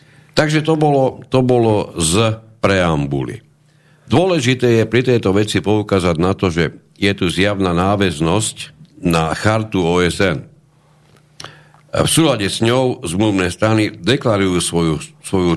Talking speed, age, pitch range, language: 125 wpm, 50-69, 85-130 Hz, Slovak